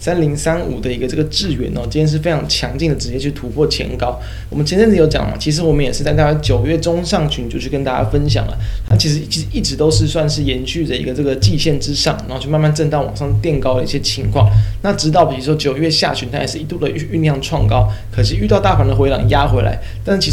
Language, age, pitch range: Chinese, 20-39, 105-150 Hz